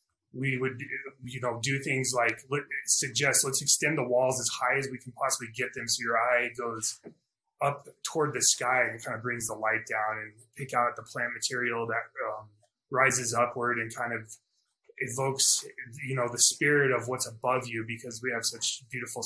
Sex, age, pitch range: male, 20-39, 120-145 Hz